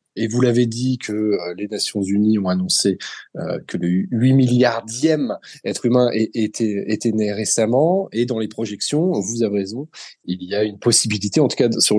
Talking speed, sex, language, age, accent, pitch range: 180 wpm, male, French, 20-39, French, 105-145 Hz